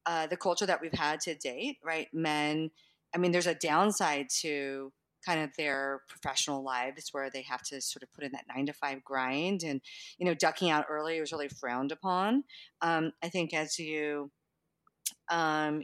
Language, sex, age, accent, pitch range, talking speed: English, female, 40-59, American, 145-170 Hz, 190 wpm